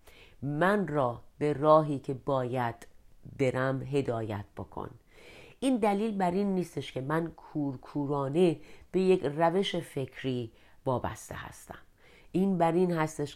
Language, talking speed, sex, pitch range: Persian, 120 wpm, female, 125-170 Hz